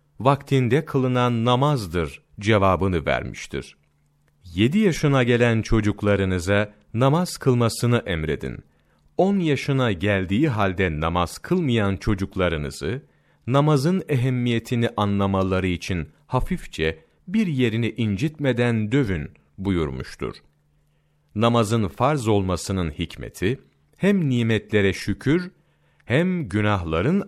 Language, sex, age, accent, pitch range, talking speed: Turkish, male, 40-59, native, 95-140 Hz, 85 wpm